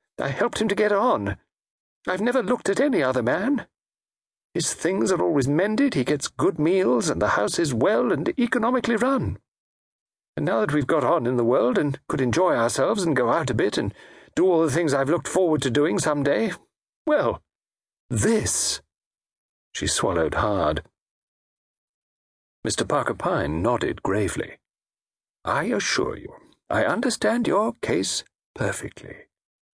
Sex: male